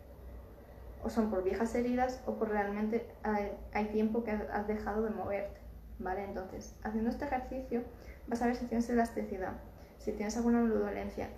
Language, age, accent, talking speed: Spanish, 10-29, Spanish, 165 wpm